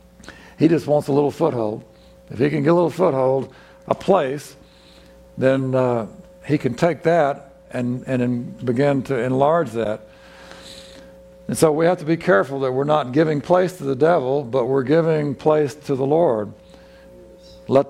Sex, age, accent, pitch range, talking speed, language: male, 60-79, American, 120-150 Hz, 170 wpm, English